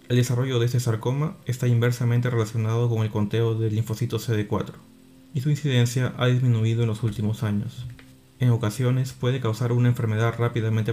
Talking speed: 165 wpm